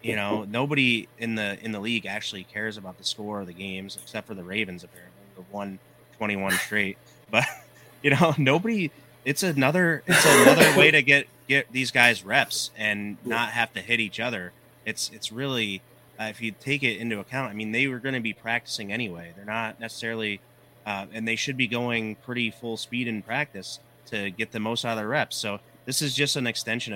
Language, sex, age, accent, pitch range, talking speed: English, male, 30-49, American, 100-120 Hz, 210 wpm